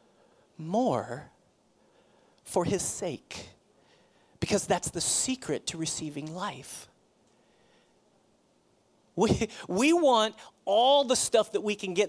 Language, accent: English, American